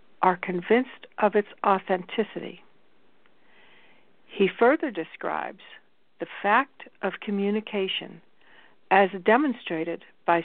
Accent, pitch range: American, 190-240 Hz